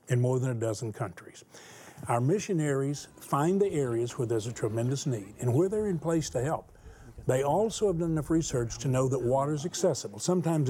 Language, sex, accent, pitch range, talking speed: English, male, American, 120-160 Hz, 200 wpm